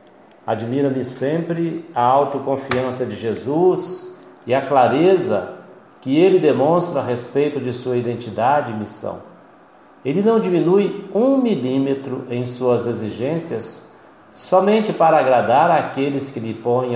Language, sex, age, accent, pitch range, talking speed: Portuguese, male, 50-69, Brazilian, 110-155 Hz, 125 wpm